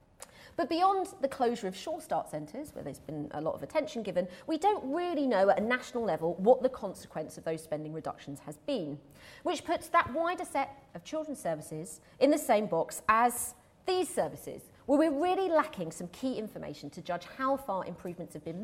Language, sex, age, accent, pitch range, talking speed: English, female, 40-59, British, 185-300 Hz, 200 wpm